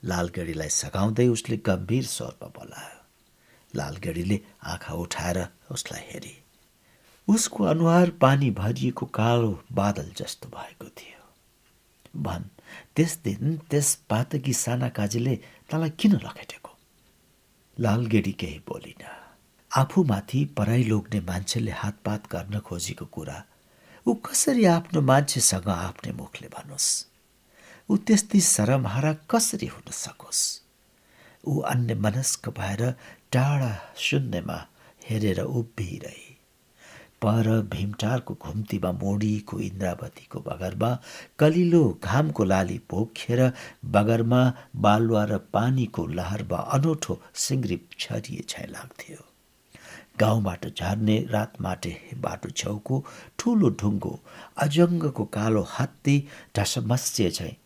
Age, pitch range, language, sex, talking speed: 60-79, 100-135 Hz, English, male, 70 wpm